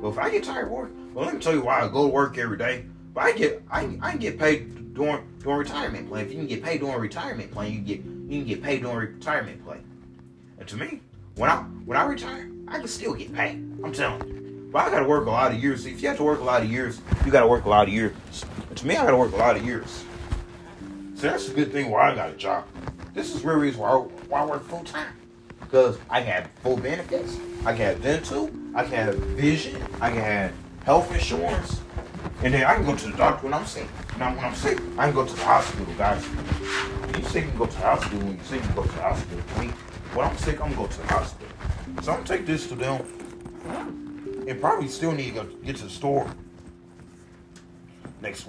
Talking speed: 255 wpm